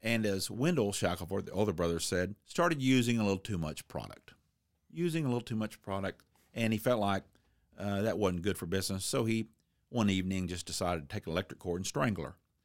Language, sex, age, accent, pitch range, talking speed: English, male, 50-69, American, 80-115 Hz, 215 wpm